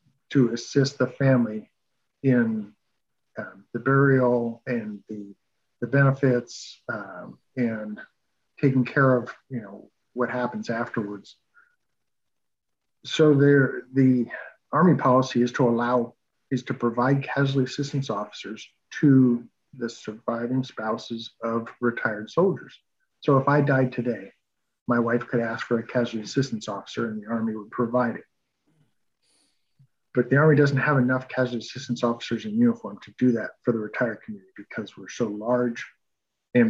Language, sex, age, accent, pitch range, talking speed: English, male, 50-69, American, 115-135 Hz, 140 wpm